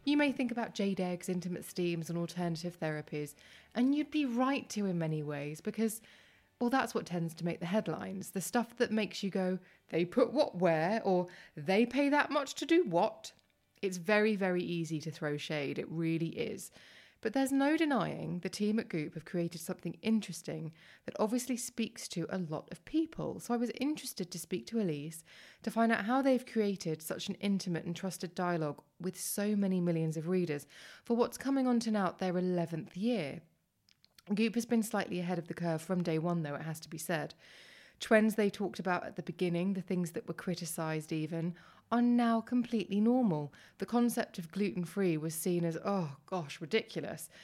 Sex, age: female, 20-39